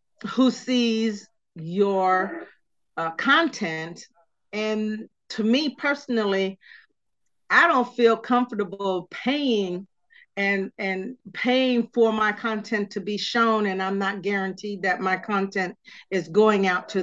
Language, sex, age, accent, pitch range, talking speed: English, female, 40-59, American, 180-225 Hz, 120 wpm